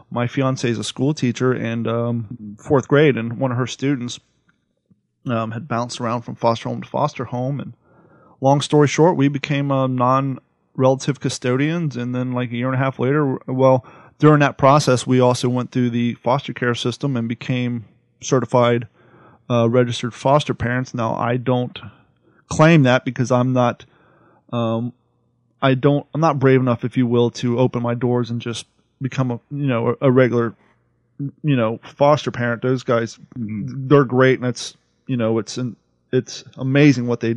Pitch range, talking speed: 120-130 Hz, 175 wpm